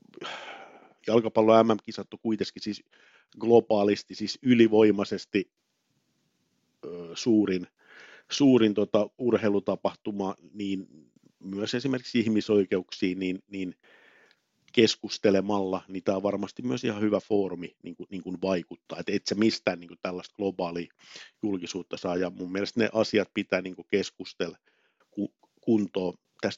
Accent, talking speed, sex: native, 120 wpm, male